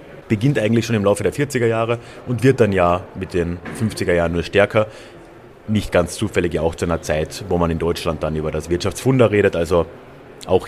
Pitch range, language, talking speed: 95-135 Hz, German, 195 wpm